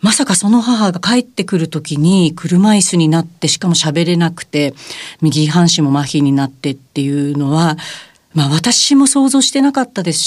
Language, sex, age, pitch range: Japanese, female, 40-59, 150-220 Hz